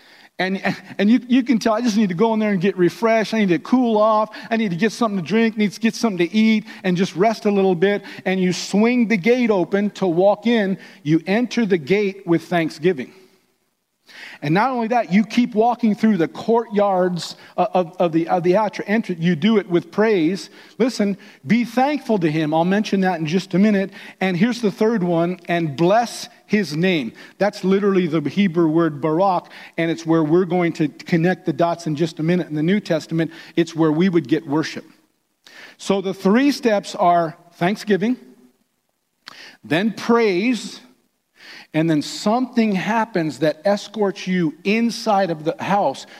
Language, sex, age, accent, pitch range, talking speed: English, male, 50-69, American, 165-220 Hz, 190 wpm